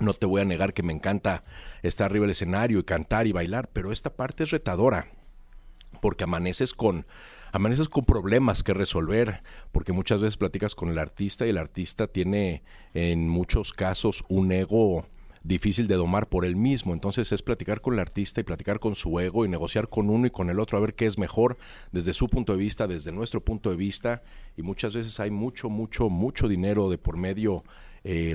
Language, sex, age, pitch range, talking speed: Spanish, male, 50-69, 90-110 Hz, 205 wpm